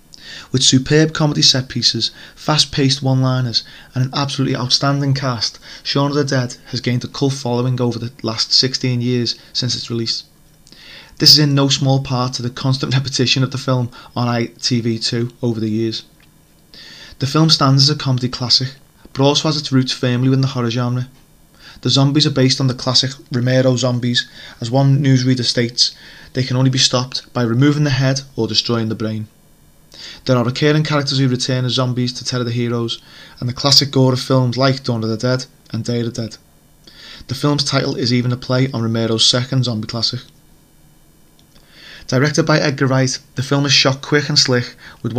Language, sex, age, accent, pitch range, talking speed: English, male, 30-49, British, 120-135 Hz, 190 wpm